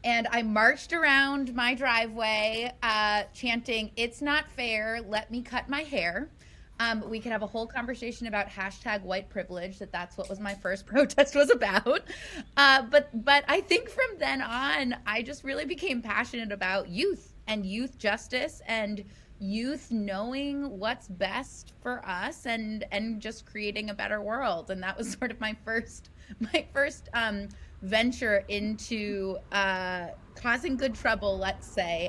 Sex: female